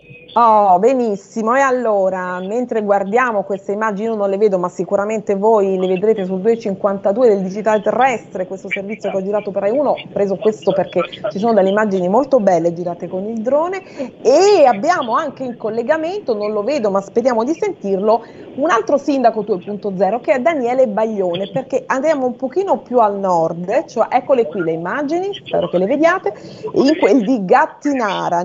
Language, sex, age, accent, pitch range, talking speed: Italian, female, 30-49, native, 190-260 Hz, 175 wpm